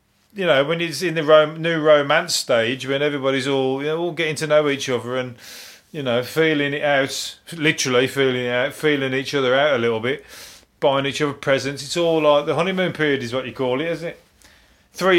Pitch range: 130-165 Hz